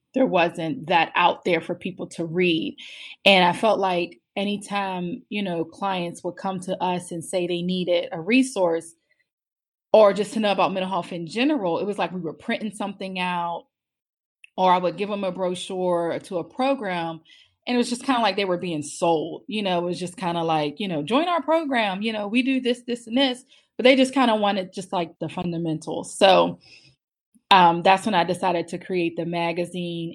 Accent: American